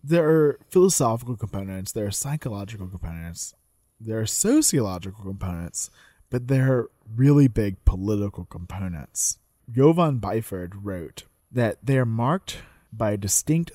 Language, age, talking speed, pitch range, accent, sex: English, 20-39, 125 wpm, 95-125 Hz, American, male